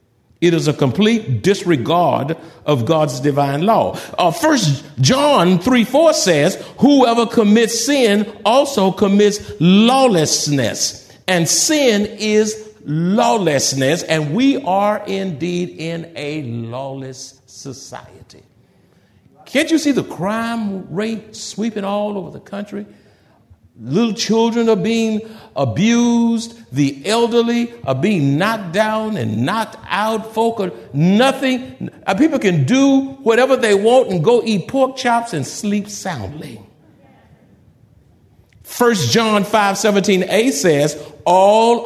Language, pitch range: English, 150-230 Hz